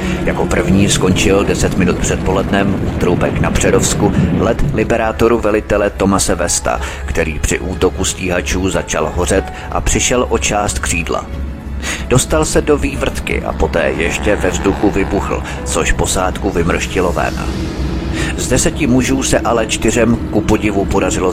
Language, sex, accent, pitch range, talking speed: Czech, male, native, 75-105 Hz, 140 wpm